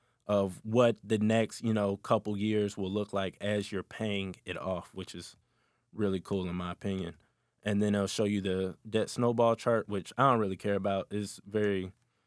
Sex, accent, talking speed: male, American, 195 wpm